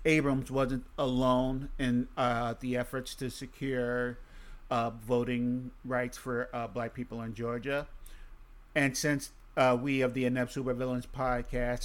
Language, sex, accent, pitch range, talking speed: English, male, American, 115-135 Hz, 135 wpm